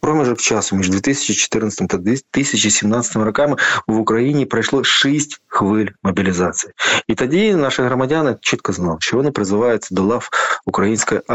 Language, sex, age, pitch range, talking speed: Ukrainian, male, 20-39, 100-115 Hz, 130 wpm